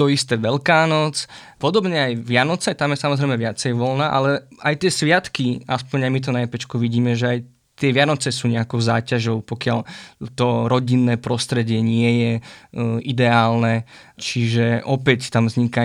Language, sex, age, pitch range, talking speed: Slovak, male, 20-39, 120-140 Hz, 150 wpm